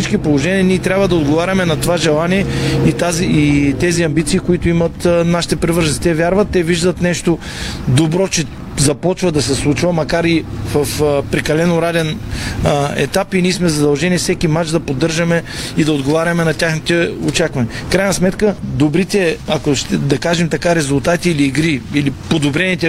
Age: 40-59